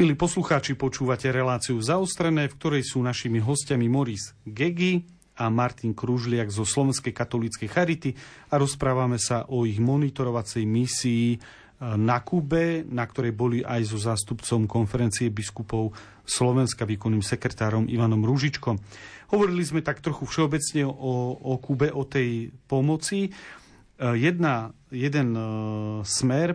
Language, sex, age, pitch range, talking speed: Slovak, male, 40-59, 120-145 Hz, 125 wpm